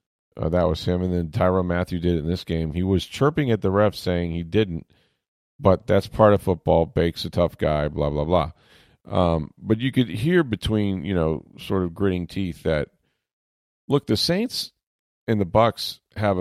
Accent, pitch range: American, 80-100 Hz